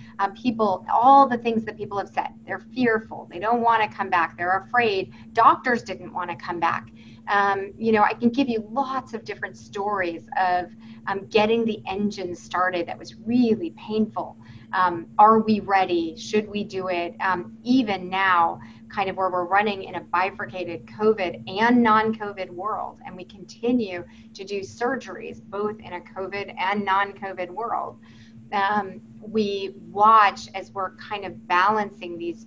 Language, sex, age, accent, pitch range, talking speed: English, female, 30-49, American, 180-230 Hz, 170 wpm